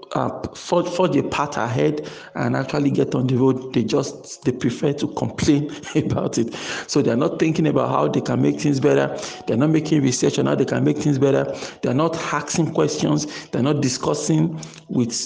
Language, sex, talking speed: English, male, 190 wpm